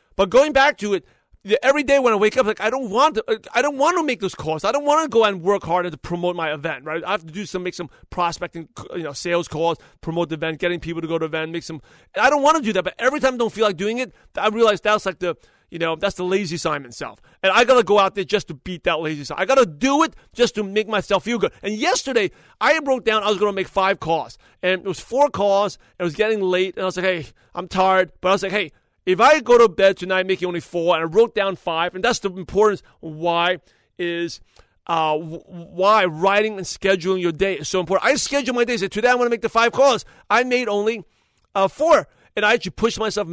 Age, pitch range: 40-59, 175-225 Hz